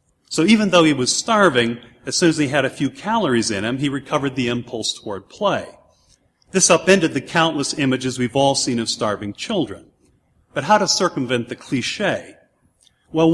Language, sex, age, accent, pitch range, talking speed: English, male, 50-69, American, 120-150 Hz, 180 wpm